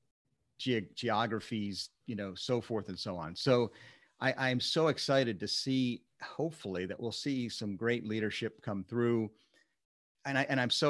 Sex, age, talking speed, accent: male, 40-59, 160 wpm, American